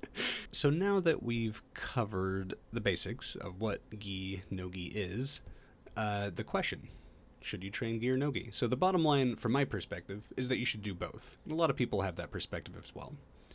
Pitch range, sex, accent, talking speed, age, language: 95-125 Hz, male, American, 200 wpm, 30-49, English